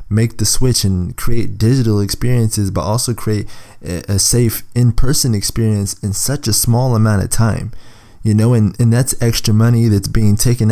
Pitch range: 100-120 Hz